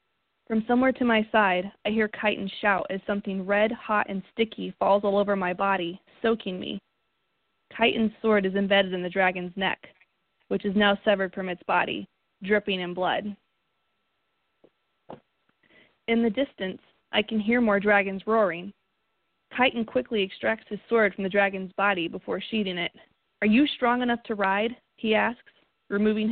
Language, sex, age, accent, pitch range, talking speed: English, female, 20-39, American, 190-220 Hz, 160 wpm